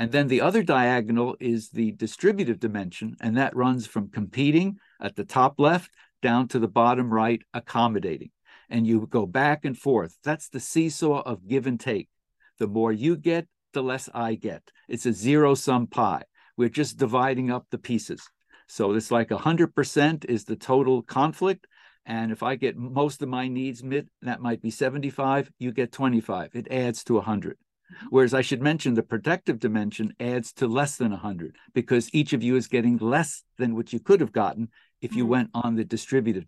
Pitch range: 115-145 Hz